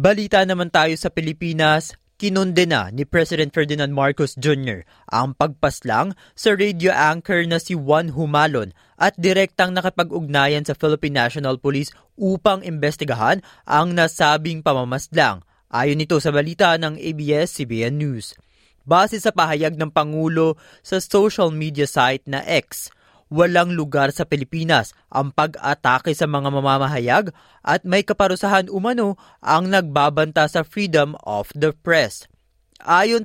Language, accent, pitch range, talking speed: Filipino, native, 140-170 Hz, 130 wpm